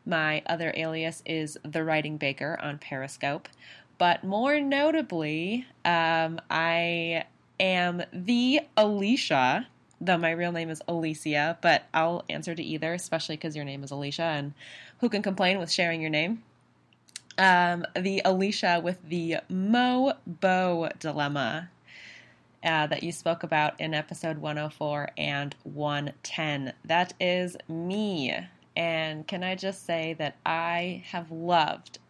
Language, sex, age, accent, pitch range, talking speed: English, female, 20-39, American, 150-175 Hz, 135 wpm